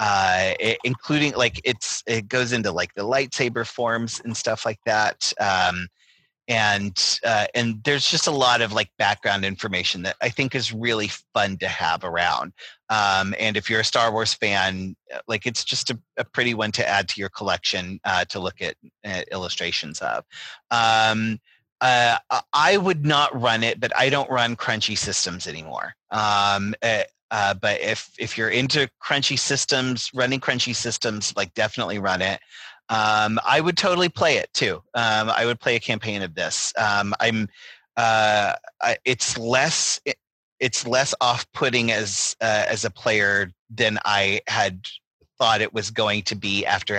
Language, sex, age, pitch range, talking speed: English, male, 30-49, 105-125 Hz, 170 wpm